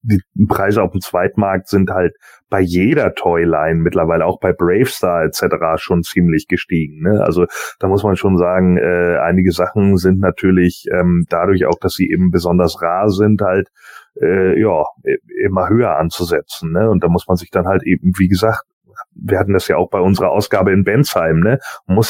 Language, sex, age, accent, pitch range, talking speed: German, male, 30-49, German, 90-120 Hz, 185 wpm